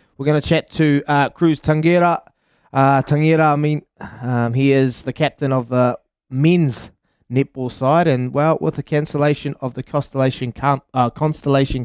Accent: Australian